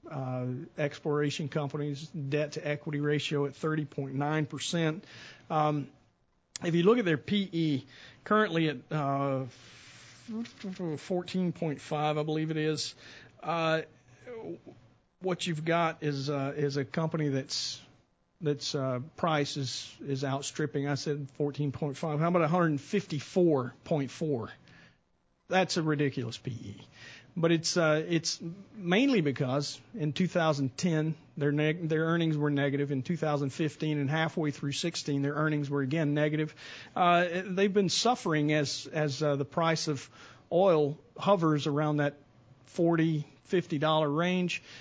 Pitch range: 140-165 Hz